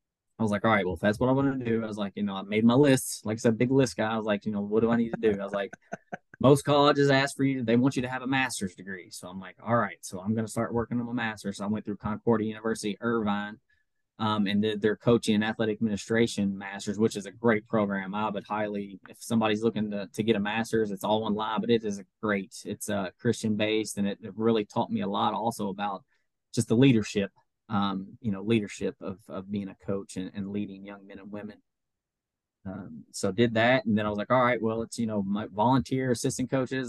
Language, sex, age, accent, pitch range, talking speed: English, male, 10-29, American, 100-115 Hz, 265 wpm